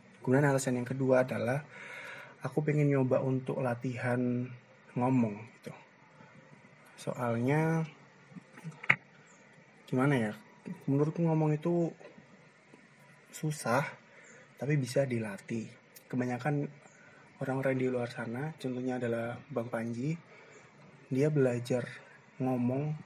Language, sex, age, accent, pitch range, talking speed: Indonesian, male, 30-49, native, 120-145 Hz, 90 wpm